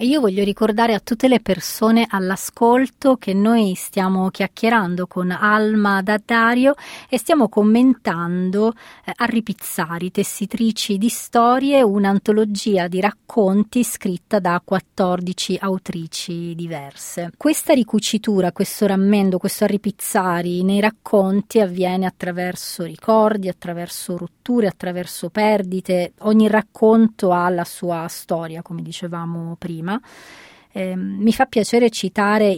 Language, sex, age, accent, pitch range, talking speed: Italian, female, 30-49, native, 180-215 Hz, 110 wpm